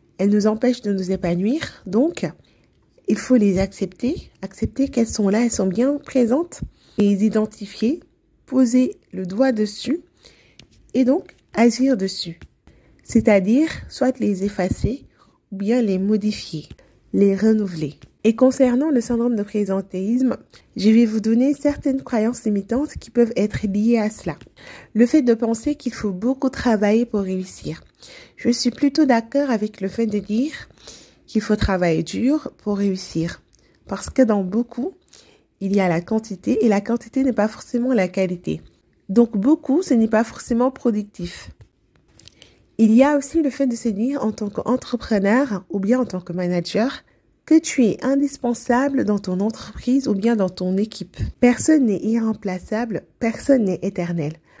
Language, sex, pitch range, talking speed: French, female, 200-255 Hz, 155 wpm